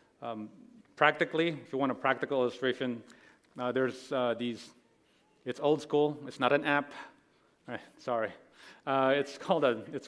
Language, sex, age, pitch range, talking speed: English, male, 40-59, 115-145 Hz, 155 wpm